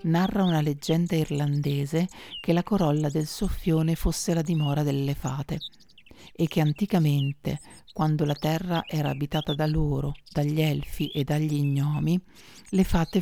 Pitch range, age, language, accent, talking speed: 145-170 Hz, 40-59, Italian, native, 140 wpm